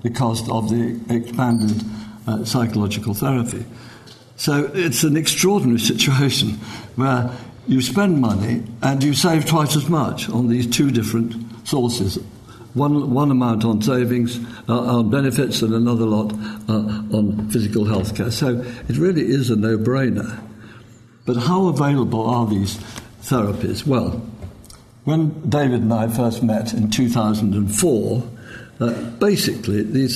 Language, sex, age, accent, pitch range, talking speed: English, male, 60-79, British, 110-125 Hz, 135 wpm